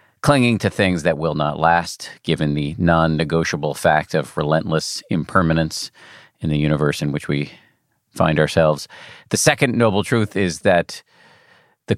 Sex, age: male, 40-59